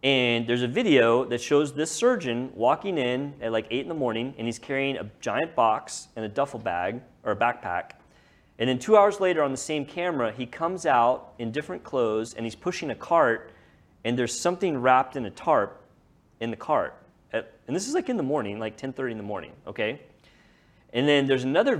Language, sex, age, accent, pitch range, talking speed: English, male, 30-49, American, 105-135 Hz, 210 wpm